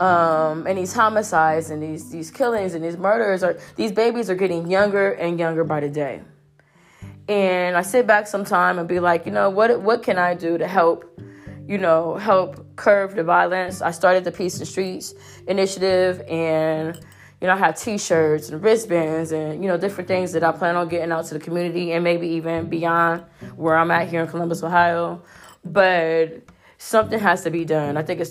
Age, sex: 20-39, female